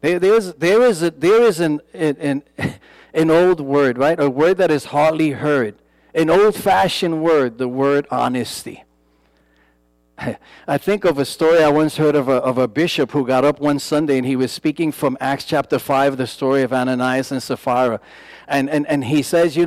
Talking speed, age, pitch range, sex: 175 wpm, 50-69, 130-170 Hz, male